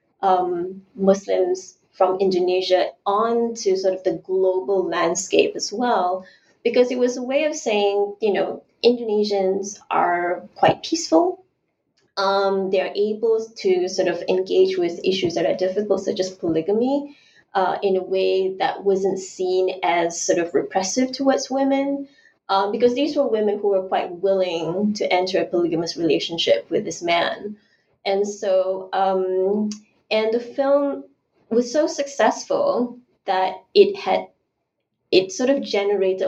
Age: 20-39